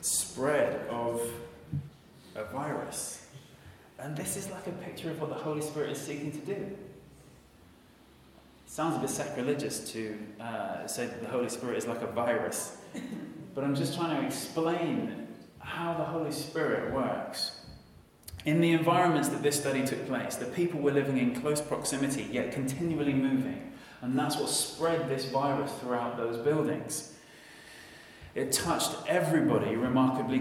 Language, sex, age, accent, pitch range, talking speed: English, male, 20-39, British, 130-160 Hz, 150 wpm